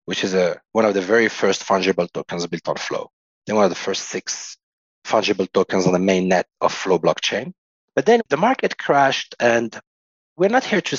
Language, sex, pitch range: English, male, 105-150 Hz